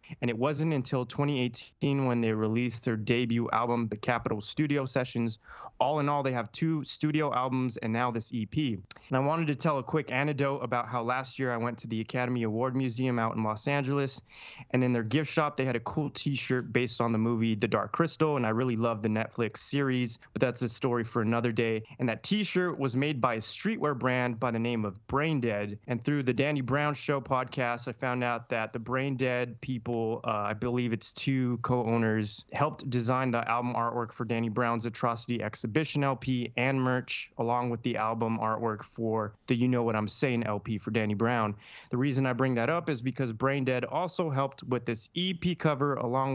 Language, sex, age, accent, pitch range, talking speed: English, male, 20-39, American, 115-140 Hz, 205 wpm